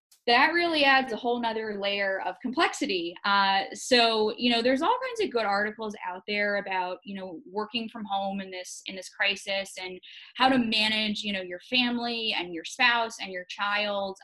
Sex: female